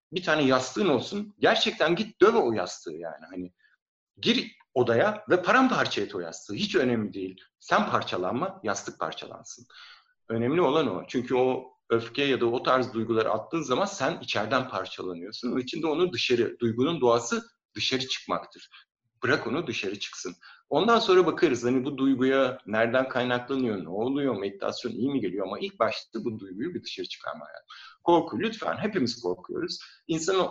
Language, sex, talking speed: Turkish, male, 155 wpm